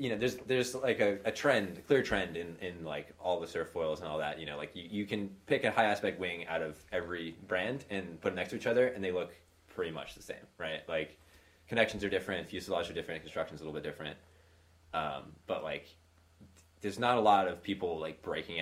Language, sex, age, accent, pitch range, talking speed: English, male, 20-39, American, 80-100 Hz, 235 wpm